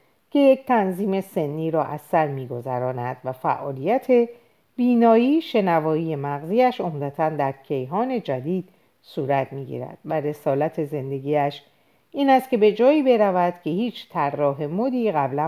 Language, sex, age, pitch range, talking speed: Persian, female, 50-69, 145-195 Hz, 125 wpm